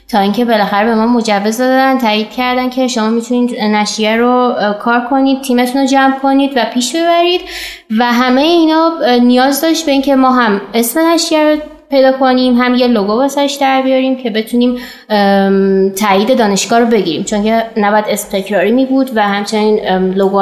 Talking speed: 170 wpm